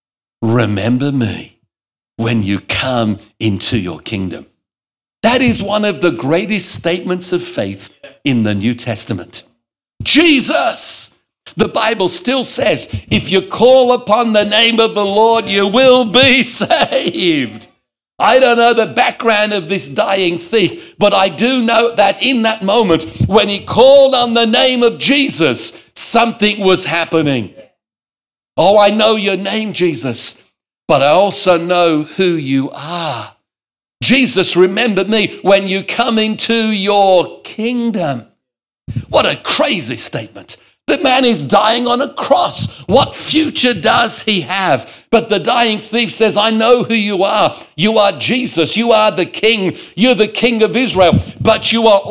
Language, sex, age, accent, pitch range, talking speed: English, male, 60-79, British, 175-235 Hz, 150 wpm